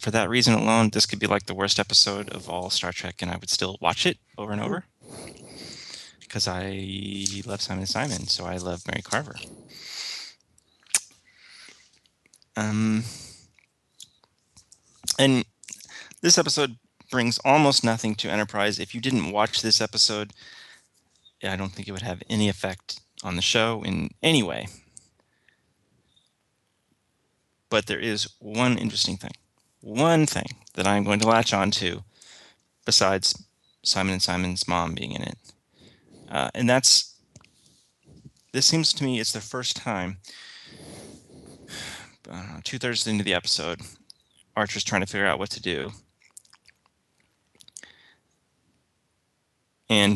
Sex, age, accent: male, 30-49, American